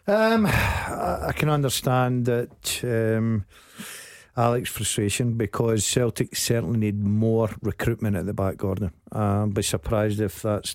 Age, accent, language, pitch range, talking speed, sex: 50-69, British, English, 105-125 Hz, 135 wpm, male